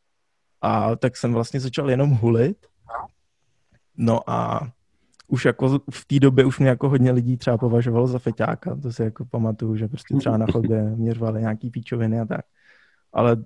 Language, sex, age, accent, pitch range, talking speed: Czech, male, 20-39, native, 115-145 Hz, 170 wpm